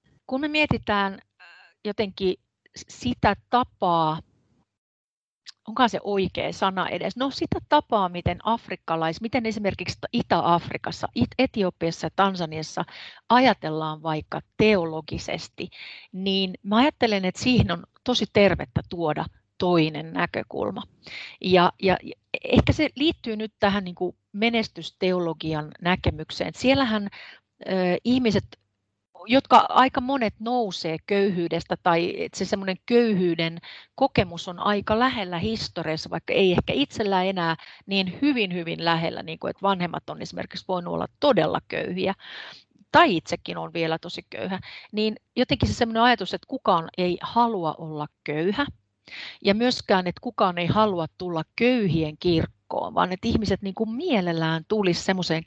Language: Finnish